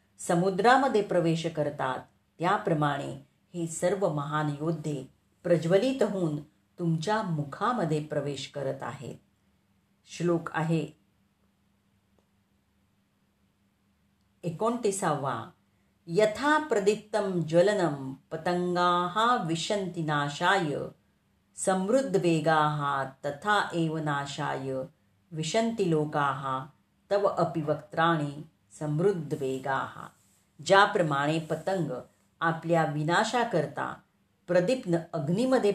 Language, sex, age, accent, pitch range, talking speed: Marathi, female, 40-59, native, 145-185 Hz, 65 wpm